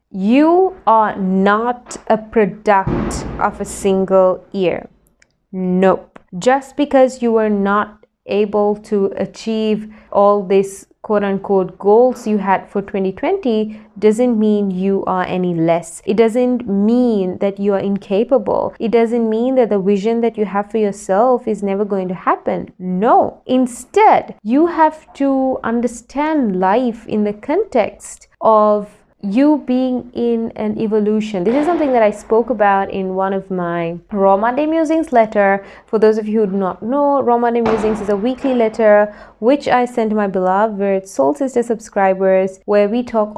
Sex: female